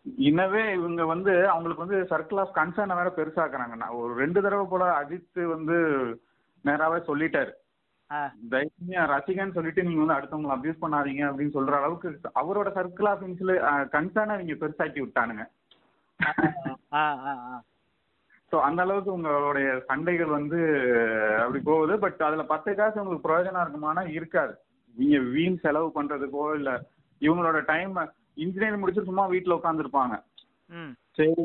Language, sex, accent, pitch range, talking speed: Tamil, male, native, 135-170 Hz, 120 wpm